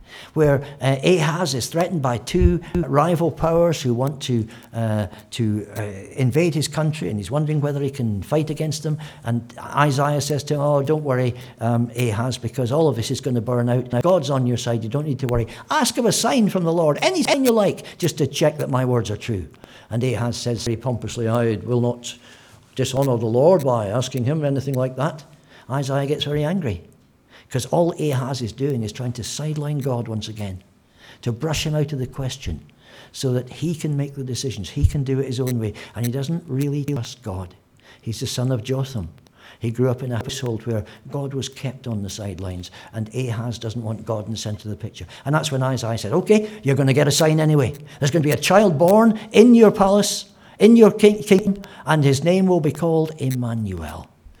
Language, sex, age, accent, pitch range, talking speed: English, male, 60-79, British, 115-150 Hz, 215 wpm